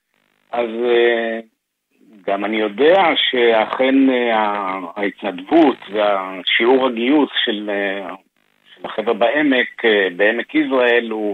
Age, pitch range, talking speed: 50-69, 105-125 Hz, 80 wpm